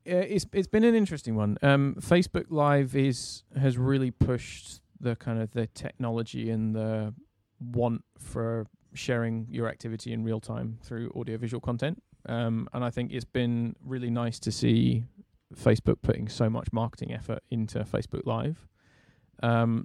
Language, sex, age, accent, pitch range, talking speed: English, male, 20-39, British, 110-125 Hz, 155 wpm